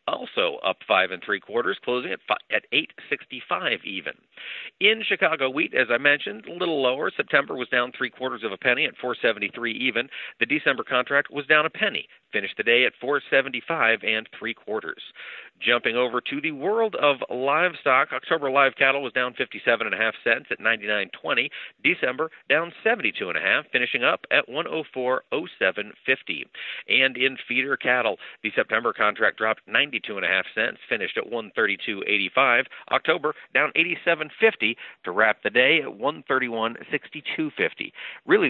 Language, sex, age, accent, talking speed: English, male, 50-69, American, 185 wpm